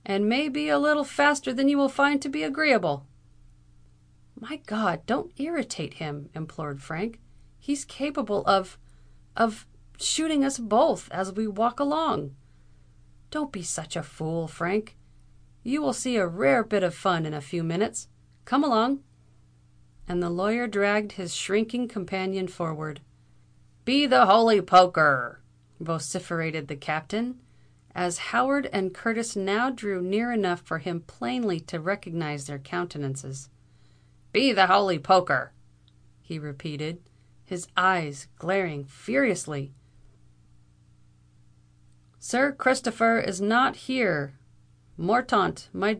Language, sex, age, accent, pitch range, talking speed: English, female, 40-59, American, 140-230 Hz, 130 wpm